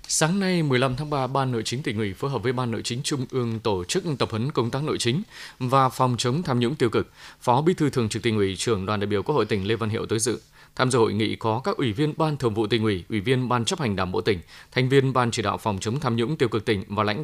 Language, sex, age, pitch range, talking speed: Vietnamese, male, 20-39, 110-150 Hz, 305 wpm